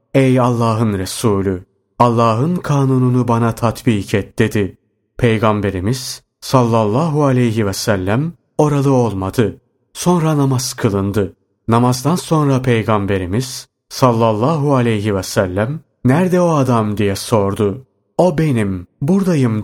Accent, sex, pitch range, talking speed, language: native, male, 105-135 Hz, 105 wpm, Turkish